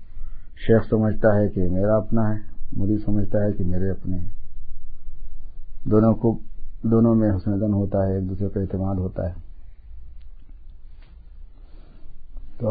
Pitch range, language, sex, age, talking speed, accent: 85-115 Hz, English, male, 50-69, 120 wpm, Indian